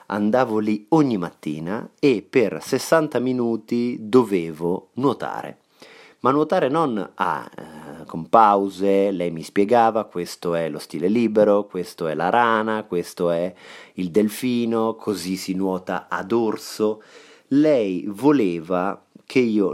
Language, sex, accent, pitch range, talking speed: Italian, male, native, 90-115 Hz, 130 wpm